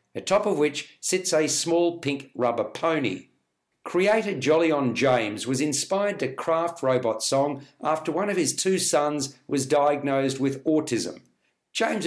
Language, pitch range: English, 135-170 Hz